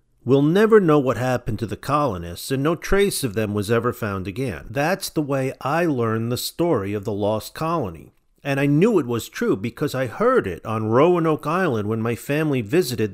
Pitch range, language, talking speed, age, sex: 110-150 Hz, English, 205 wpm, 40-59, male